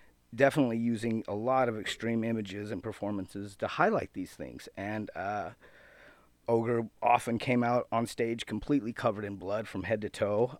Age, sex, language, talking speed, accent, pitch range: 40-59, male, English, 165 wpm, American, 100-115 Hz